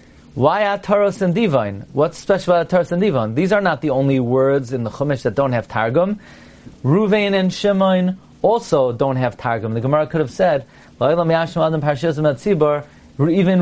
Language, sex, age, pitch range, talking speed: English, male, 30-49, 125-185 Hz, 160 wpm